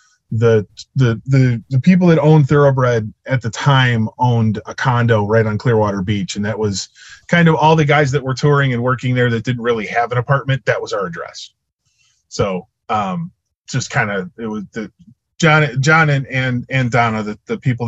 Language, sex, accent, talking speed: English, male, American, 200 wpm